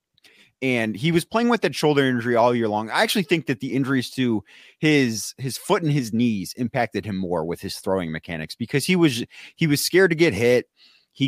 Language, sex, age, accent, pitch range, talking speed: English, male, 30-49, American, 120-160 Hz, 220 wpm